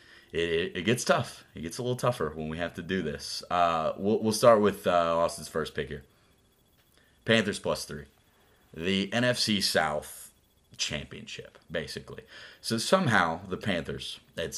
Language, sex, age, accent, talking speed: English, male, 30-49, American, 155 wpm